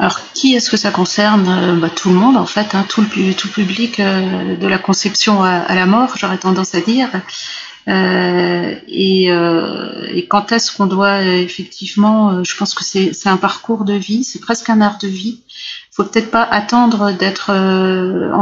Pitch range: 185-215 Hz